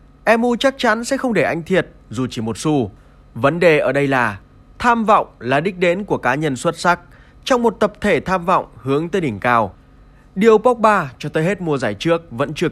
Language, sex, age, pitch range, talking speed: Vietnamese, male, 20-39, 125-210 Hz, 220 wpm